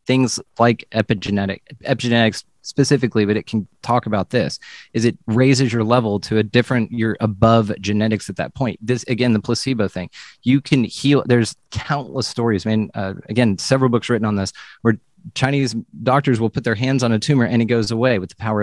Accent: American